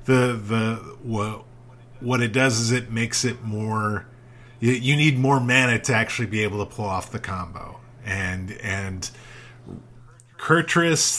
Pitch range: 110-125 Hz